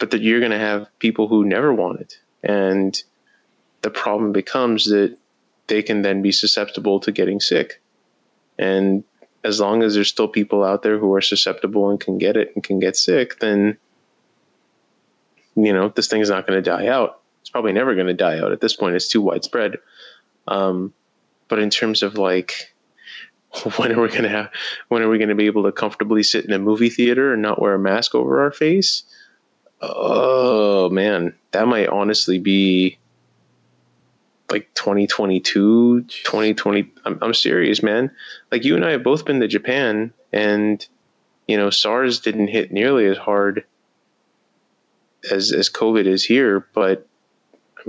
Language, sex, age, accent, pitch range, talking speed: English, male, 20-39, American, 95-110 Hz, 175 wpm